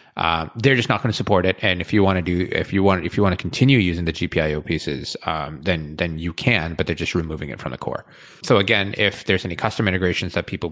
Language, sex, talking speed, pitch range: English, male, 265 wpm, 85-100 Hz